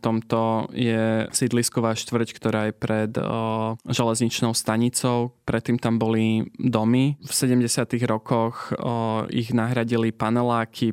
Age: 20-39